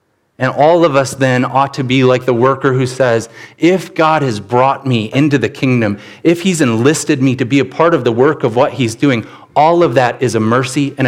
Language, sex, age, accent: English, male, 30-49, American